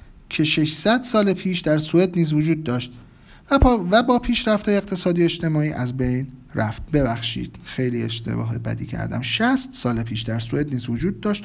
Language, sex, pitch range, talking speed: Persian, male, 130-195 Hz, 155 wpm